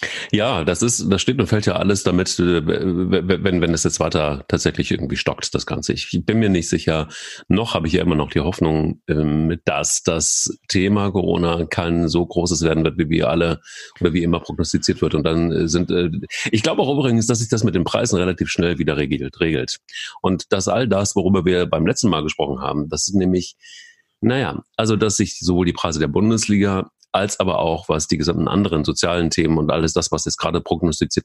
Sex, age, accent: male, 40-59, German